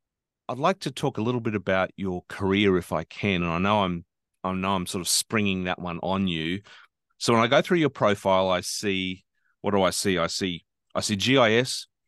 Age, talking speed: 40-59, 225 wpm